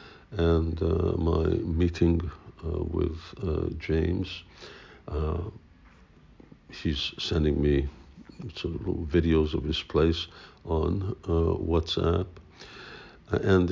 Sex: male